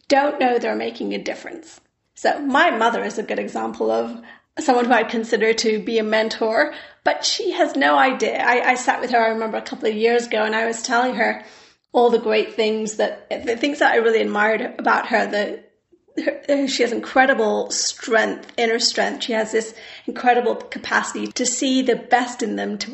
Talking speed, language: 200 wpm, English